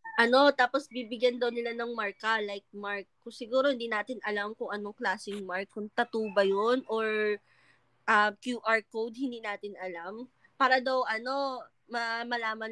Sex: female